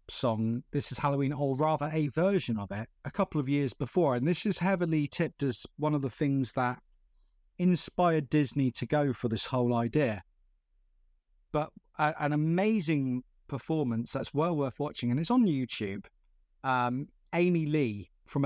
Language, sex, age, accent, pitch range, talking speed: English, male, 30-49, British, 120-150 Hz, 165 wpm